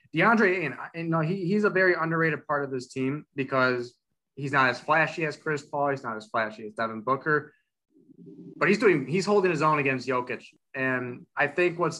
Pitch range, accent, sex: 130-150 Hz, American, male